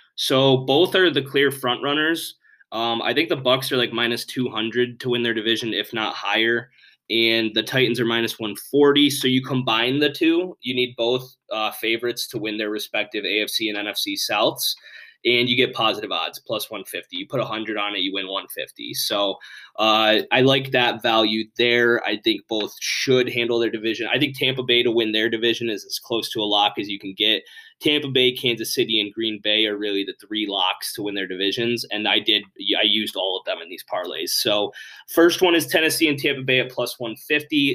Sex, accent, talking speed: male, American, 210 wpm